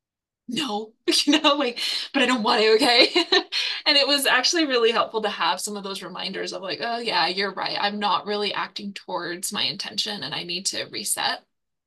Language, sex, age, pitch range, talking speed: English, female, 20-39, 200-235 Hz, 200 wpm